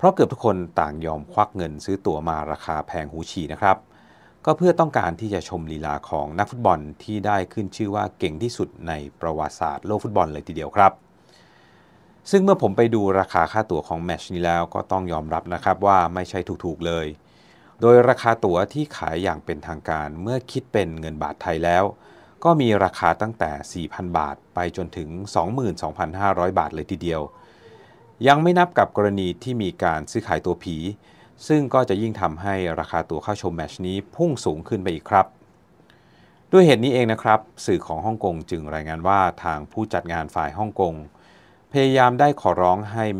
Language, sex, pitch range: Thai, male, 80-110 Hz